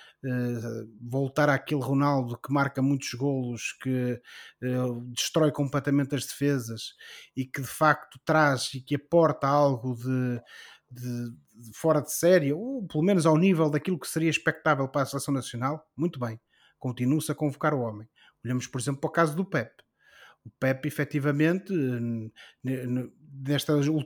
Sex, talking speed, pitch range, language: male, 150 wpm, 130-160 Hz, Portuguese